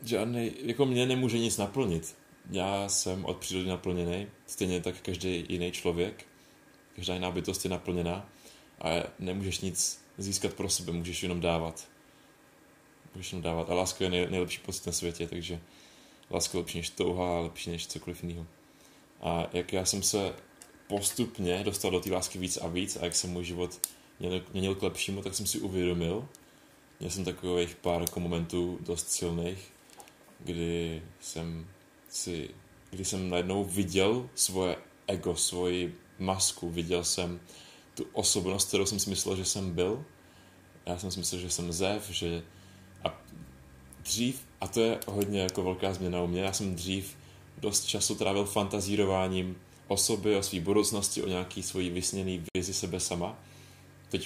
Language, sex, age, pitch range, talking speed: Czech, male, 20-39, 85-95 Hz, 155 wpm